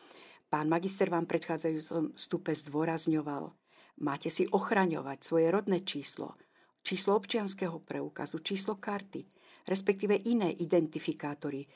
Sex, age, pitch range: female, 50-69, 155-200 Hz